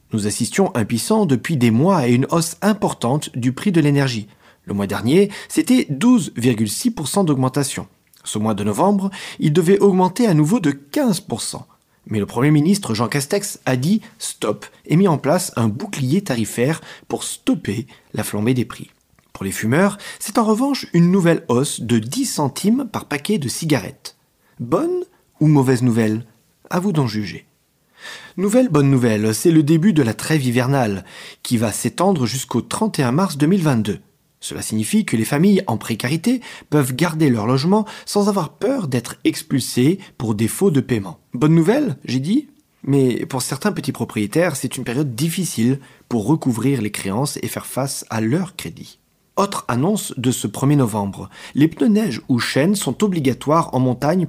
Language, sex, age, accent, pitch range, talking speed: French, male, 40-59, French, 120-190 Hz, 170 wpm